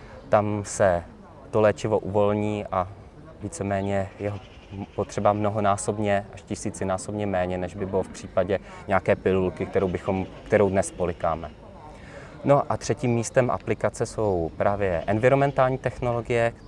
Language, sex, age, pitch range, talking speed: Czech, male, 20-39, 95-110 Hz, 120 wpm